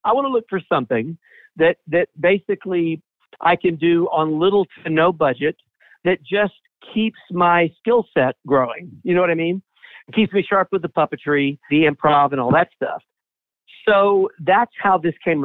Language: English